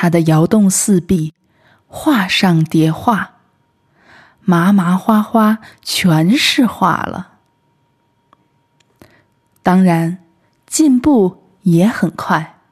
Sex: female